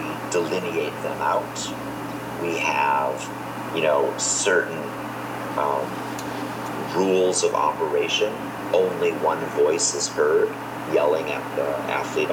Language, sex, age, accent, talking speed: English, male, 40-59, American, 100 wpm